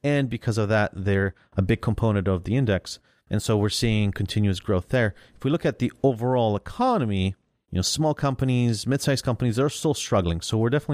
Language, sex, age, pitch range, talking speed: English, male, 30-49, 100-125 Hz, 205 wpm